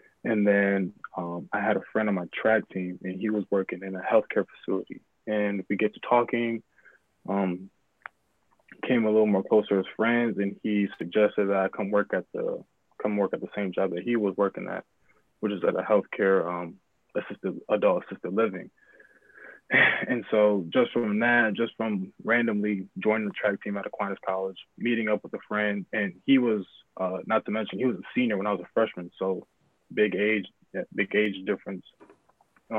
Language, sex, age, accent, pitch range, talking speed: English, male, 20-39, American, 95-110 Hz, 190 wpm